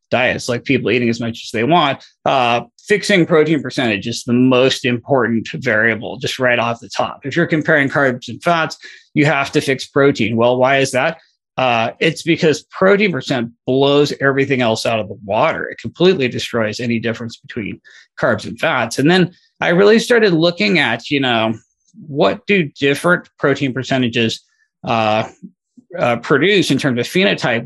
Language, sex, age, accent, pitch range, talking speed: English, male, 30-49, American, 115-160 Hz, 175 wpm